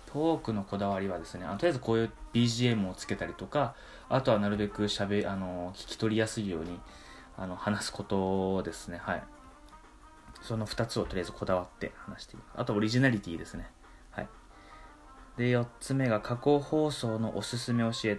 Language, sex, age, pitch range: Japanese, male, 20-39, 100-120 Hz